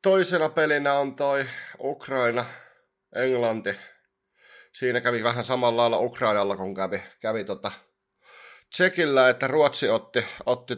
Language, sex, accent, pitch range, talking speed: Finnish, male, native, 105-130 Hz, 115 wpm